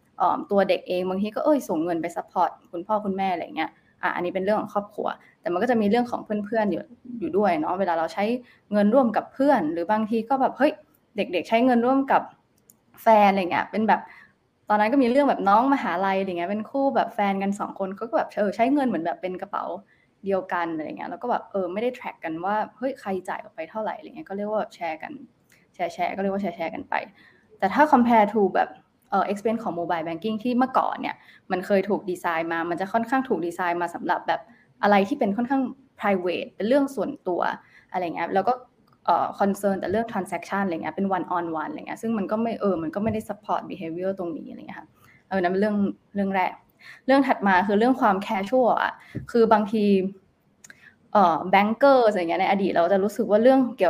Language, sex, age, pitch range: Thai, female, 20-39, 190-235 Hz